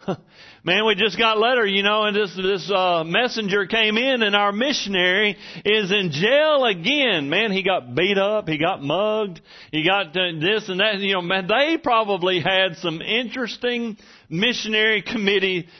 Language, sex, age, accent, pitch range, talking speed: English, male, 40-59, American, 155-210 Hz, 170 wpm